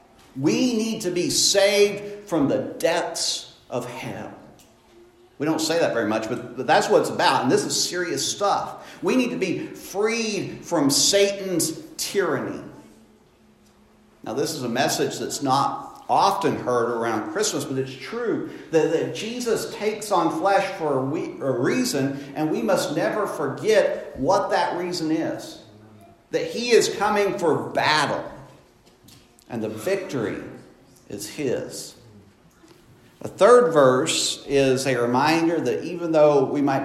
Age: 50-69